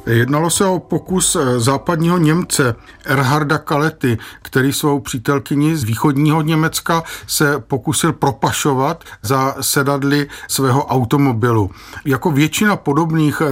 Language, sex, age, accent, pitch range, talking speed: Czech, male, 50-69, native, 130-165 Hz, 105 wpm